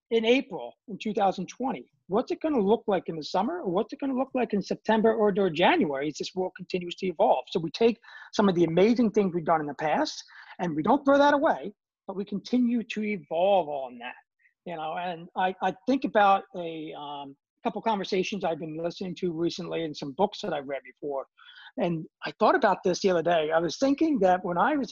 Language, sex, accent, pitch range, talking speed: English, male, American, 160-210 Hz, 225 wpm